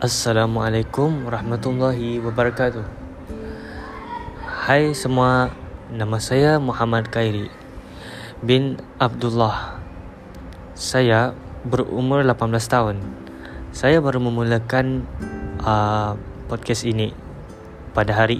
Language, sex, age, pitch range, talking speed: Malay, male, 10-29, 90-120 Hz, 75 wpm